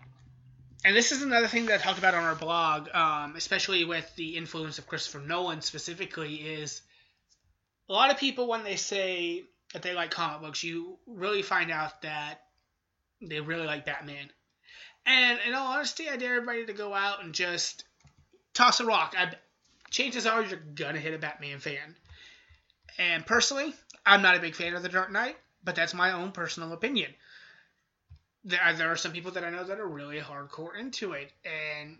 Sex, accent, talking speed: male, American, 185 wpm